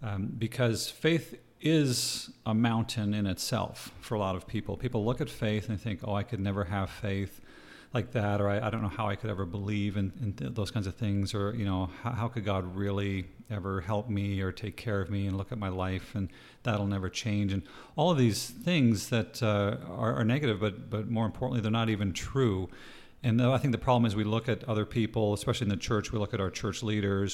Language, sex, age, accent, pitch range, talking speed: English, male, 40-59, American, 100-115 Hz, 240 wpm